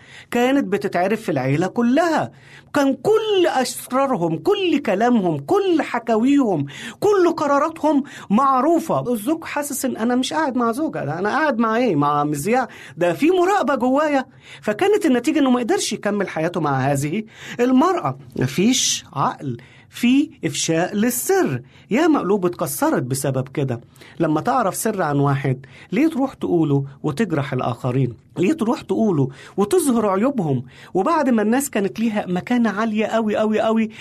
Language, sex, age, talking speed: Arabic, male, 40-59, 140 wpm